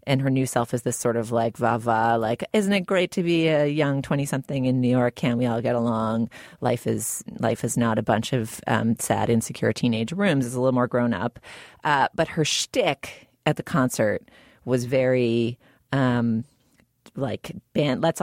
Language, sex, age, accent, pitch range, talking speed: English, female, 30-49, American, 115-140 Hz, 195 wpm